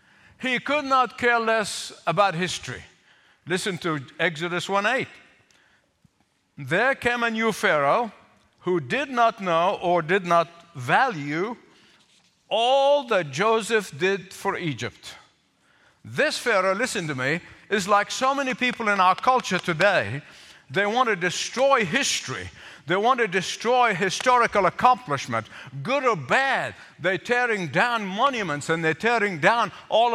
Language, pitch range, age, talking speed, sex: English, 175-240 Hz, 50-69, 135 wpm, male